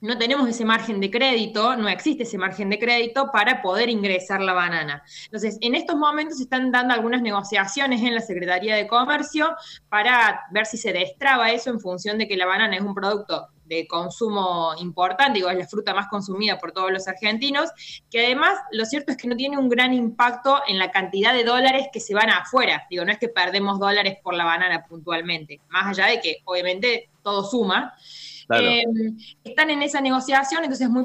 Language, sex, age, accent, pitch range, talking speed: Spanish, female, 20-39, Argentinian, 195-260 Hz, 200 wpm